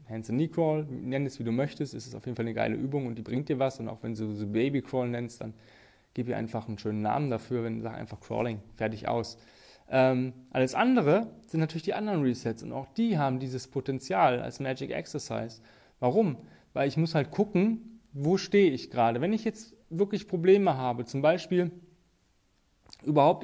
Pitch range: 120-160 Hz